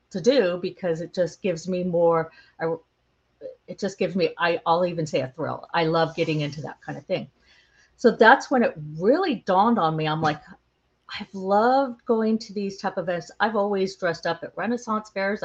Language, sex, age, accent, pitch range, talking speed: English, female, 50-69, American, 160-205 Hz, 200 wpm